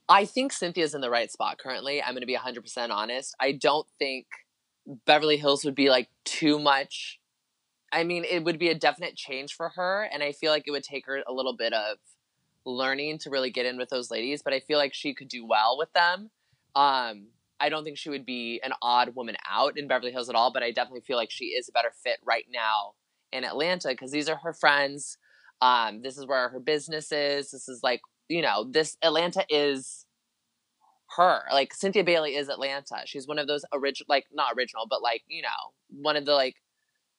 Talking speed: 225 wpm